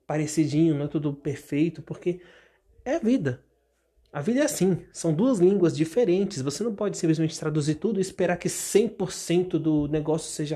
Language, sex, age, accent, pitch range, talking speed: Portuguese, male, 20-39, Brazilian, 150-185 Hz, 165 wpm